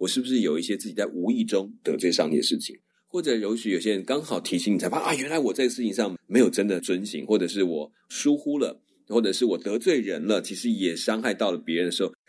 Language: Chinese